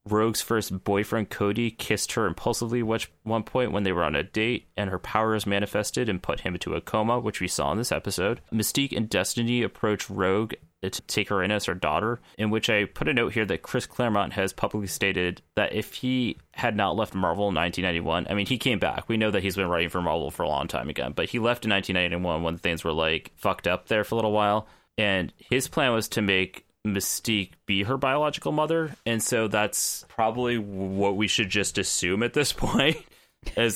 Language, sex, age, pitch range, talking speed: English, male, 30-49, 95-115 Hz, 220 wpm